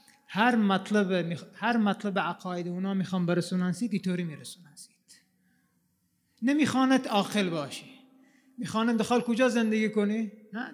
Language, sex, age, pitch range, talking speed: Arabic, male, 30-49, 185-240 Hz, 105 wpm